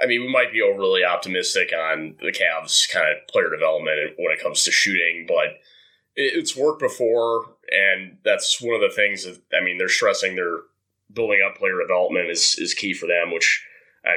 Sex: male